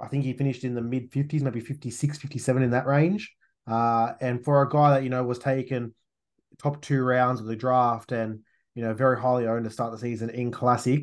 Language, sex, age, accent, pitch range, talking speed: English, male, 20-39, Australian, 115-145 Hz, 225 wpm